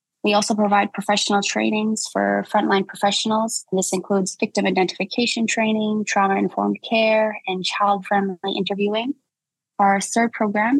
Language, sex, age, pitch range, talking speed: English, female, 20-39, 180-205 Hz, 115 wpm